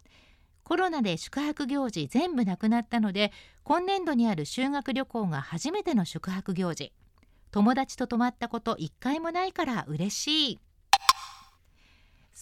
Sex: female